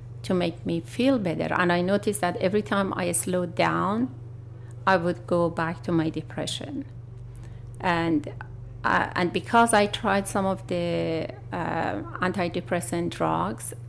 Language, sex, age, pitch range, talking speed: English, female, 40-59, 120-190 Hz, 145 wpm